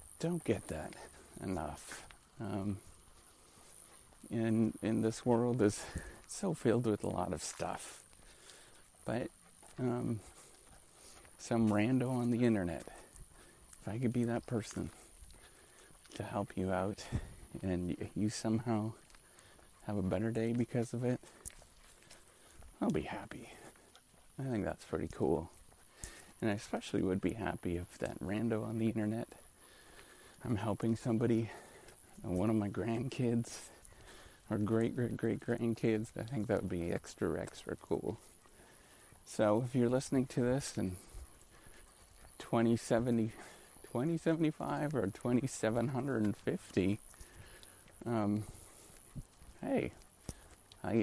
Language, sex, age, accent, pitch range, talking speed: English, male, 30-49, American, 95-115 Hz, 105 wpm